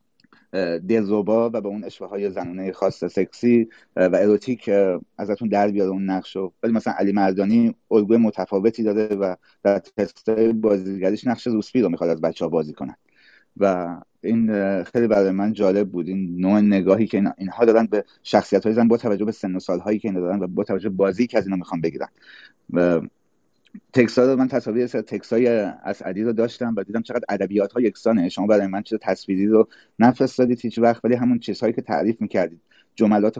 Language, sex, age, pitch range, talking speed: Persian, male, 30-49, 100-120 Hz, 185 wpm